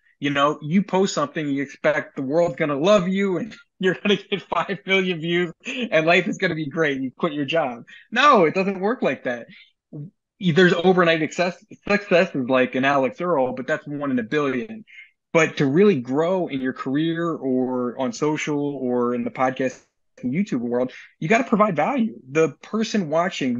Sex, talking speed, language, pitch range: male, 190 wpm, English, 150-205 Hz